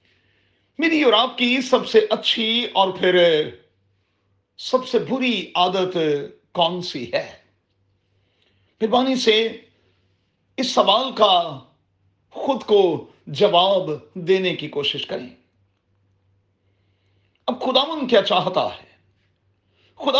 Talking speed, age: 105 wpm, 40-59